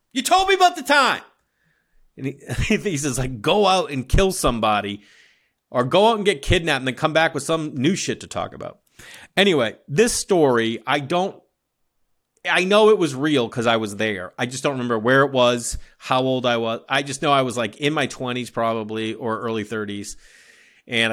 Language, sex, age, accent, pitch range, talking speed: English, male, 30-49, American, 115-160 Hz, 205 wpm